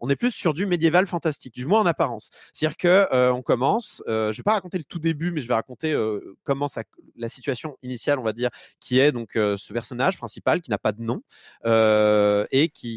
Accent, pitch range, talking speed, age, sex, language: French, 110-145 Hz, 240 wpm, 30-49, male, French